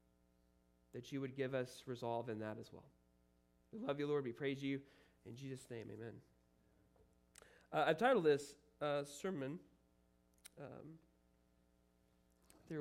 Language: English